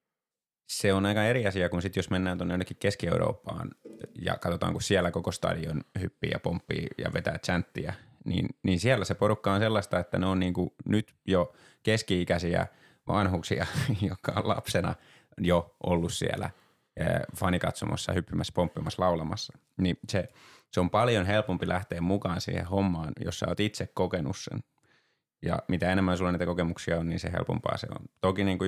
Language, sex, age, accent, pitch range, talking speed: Finnish, male, 20-39, native, 90-100 Hz, 170 wpm